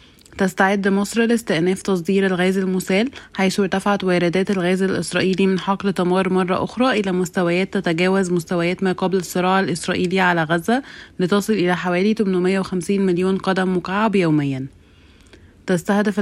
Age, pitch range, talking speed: 20-39, 180-200 Hz, 130 wpm